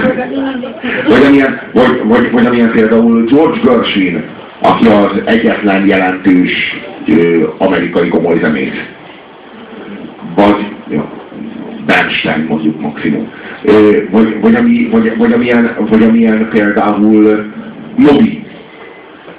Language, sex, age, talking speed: Hungarian, male, 60-79, 100 wpm